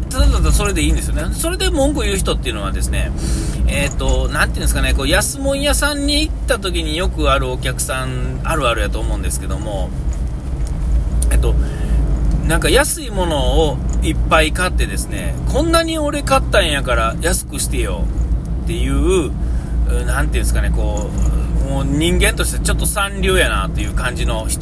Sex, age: male, 40-59